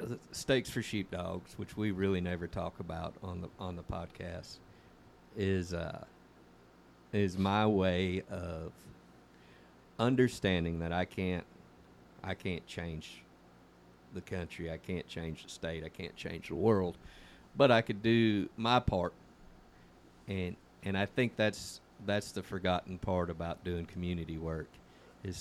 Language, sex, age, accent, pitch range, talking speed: English, male, 50-69, American, 85-95 Hz, 140 wpm